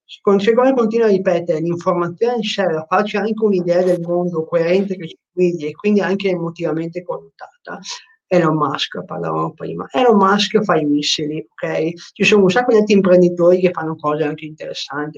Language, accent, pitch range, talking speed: Italian, native, 165-210 Hz, 175 wpm